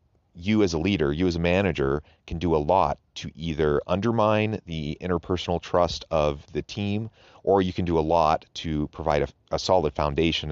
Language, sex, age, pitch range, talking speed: English, male, 30-49, 75-90 Hz, 190 wpm